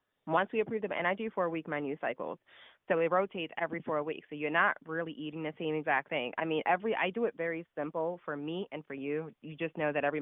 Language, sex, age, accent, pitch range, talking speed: English, female, 20-39, American, 150-175 Hz, 260 wpm